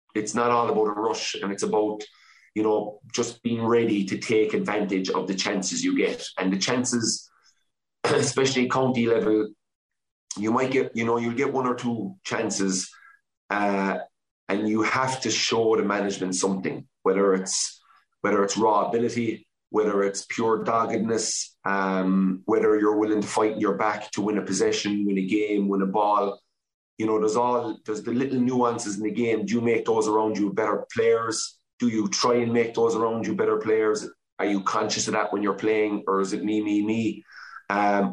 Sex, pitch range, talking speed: male, 100-115 Hz, 190 wpm